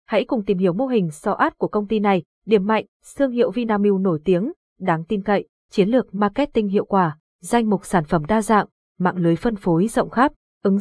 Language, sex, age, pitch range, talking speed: Vietnamese, female, 20-39, 190-240 Hz, 220 wpm